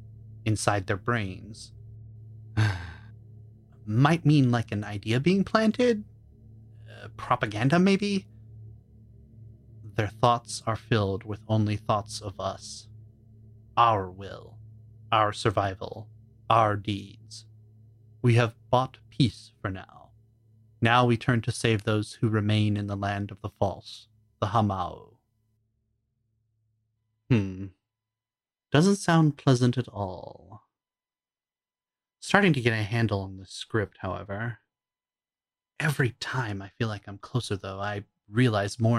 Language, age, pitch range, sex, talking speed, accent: English, 30-49, 105-120 Hz, male, 115 wpm, American